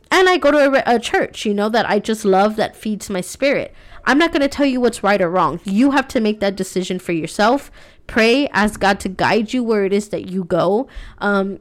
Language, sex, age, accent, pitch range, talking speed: English, female, 20-39, American, 190-220 Hz, 250 wpm